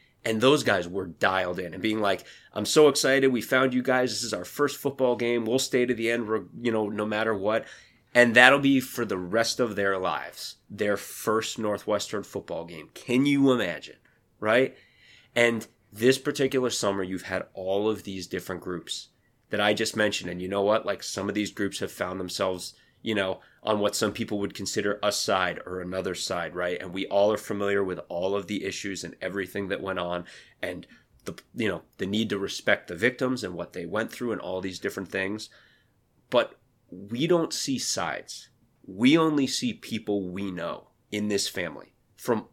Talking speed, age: 200 wpm, 30-49